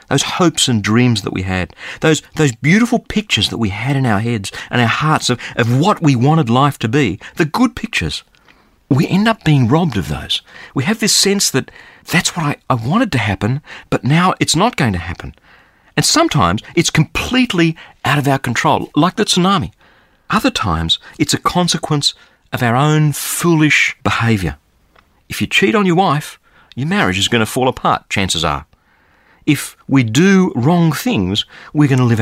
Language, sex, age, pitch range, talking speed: English, male, 40-59, 100-155 Hz, 190 wpm